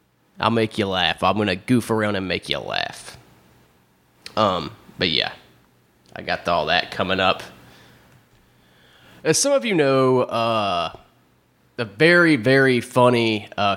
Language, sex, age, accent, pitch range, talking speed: English, male, 20-39, American, 95-115 Hz, 145 wpm